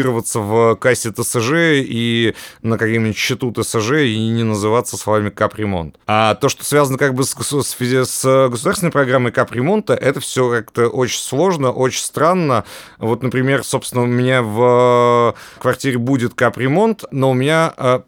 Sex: male